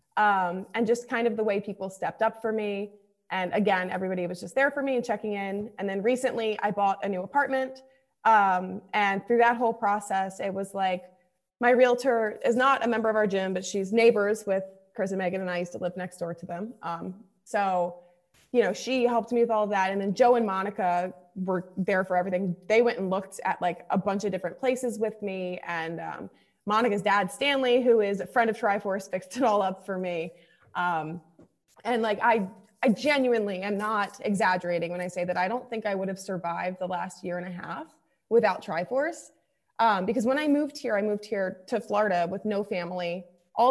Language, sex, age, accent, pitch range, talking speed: English, female, 20-39, American, 185-230 Hz, 215 wpm